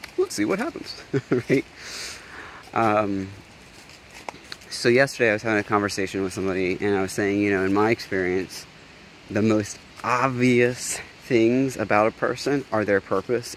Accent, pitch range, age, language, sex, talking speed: American, 95-110 Hz, 20-39, English, male, 150 wpm